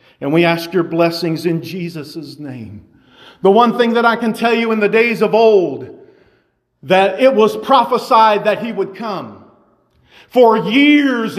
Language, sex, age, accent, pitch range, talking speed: English, male, 50-69, American, 190-250 Hz, 165 wpm